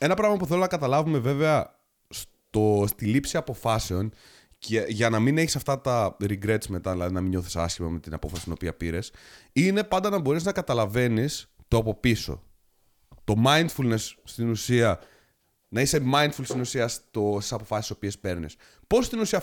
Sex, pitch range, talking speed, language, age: male, 100-150 Hz, 175 wpm, Greek, 30-49